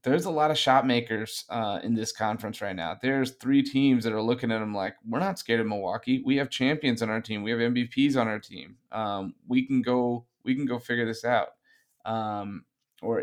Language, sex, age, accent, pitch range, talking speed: English, male, 30-49, American, 110-125 Hz, 225 wpm